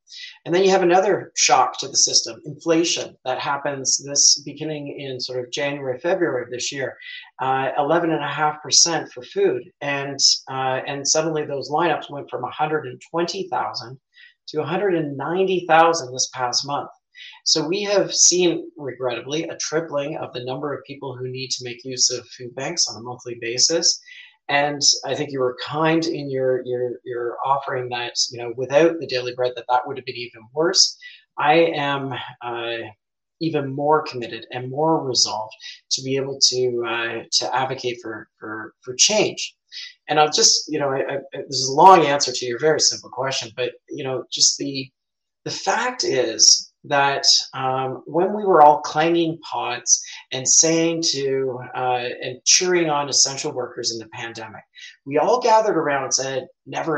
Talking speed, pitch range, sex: 180 wpm, 130-165 Hz, male